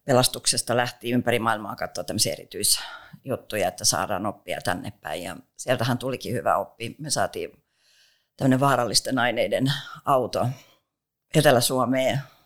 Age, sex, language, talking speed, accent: 50-69, female, Finnish, 110 wpm, native